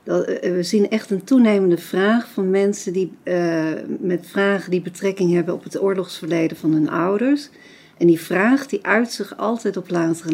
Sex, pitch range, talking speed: female, 165-200 Hz, 180 wpm